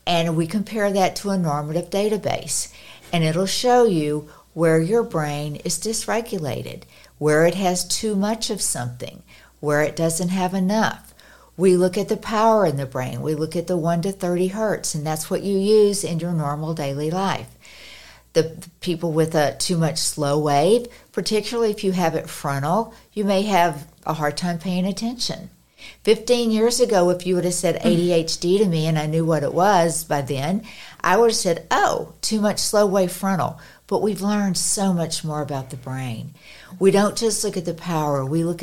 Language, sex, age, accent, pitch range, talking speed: English, female, 60-79, American, 160-200 Hz, 195 wpm